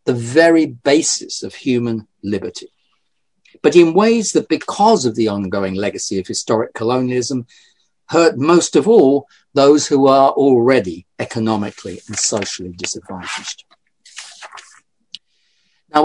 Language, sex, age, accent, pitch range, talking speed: English, male, 40-59, British, 110-160 Hz, 115 wpm